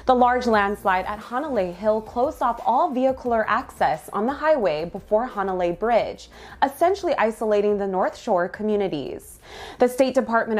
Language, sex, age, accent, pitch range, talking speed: English, female, 20-39, American, 195-250 Hz, 145 wpm